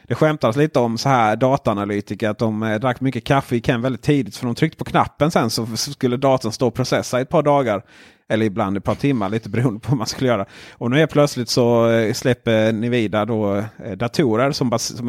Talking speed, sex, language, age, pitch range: 230 wpm, male, Swedish, 30-49, 105-130 Hz